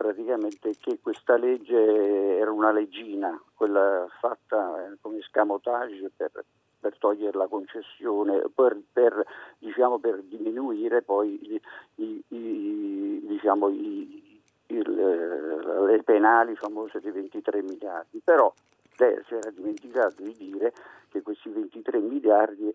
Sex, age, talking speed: male, 50-69, 120 wpm